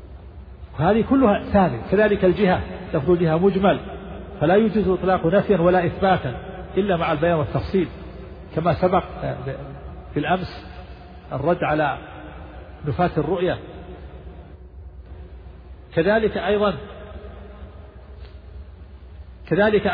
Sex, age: male, 50-69